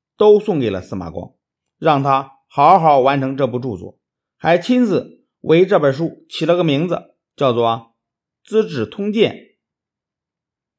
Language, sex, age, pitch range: Chinese, male, 50-69, 120-185 Hz